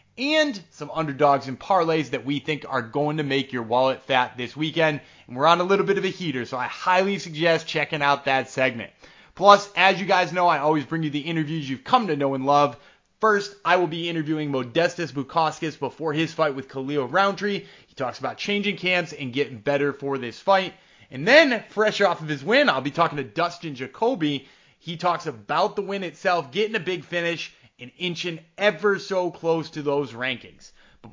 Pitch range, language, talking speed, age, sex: 140-190 Hz, English, 210 wpm, 20-39, male